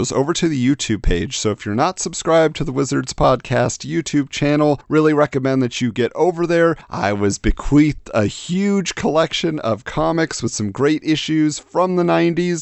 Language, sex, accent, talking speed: English, male, American, 180 wpm